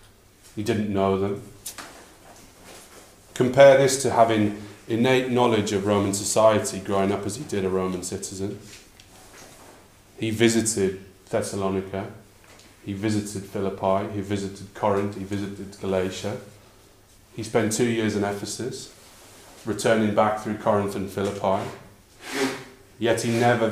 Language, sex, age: English, male, 30-49